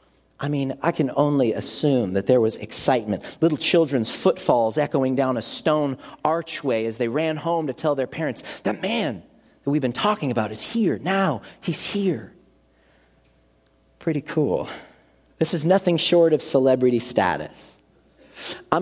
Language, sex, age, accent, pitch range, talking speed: English, male, 40-59, American, 130-210 Hz, 155 wpm